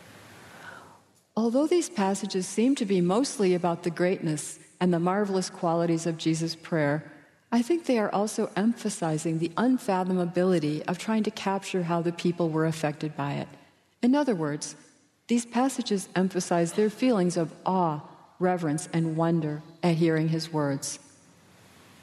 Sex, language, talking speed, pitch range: female, English, 145 wpm, 160-210 Hz